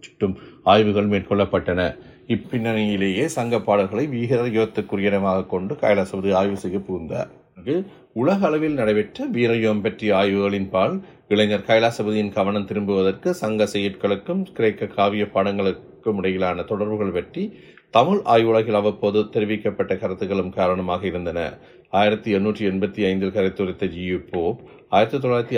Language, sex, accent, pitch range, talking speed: Tamil, male, native, 95-110 Hz, 110 wpm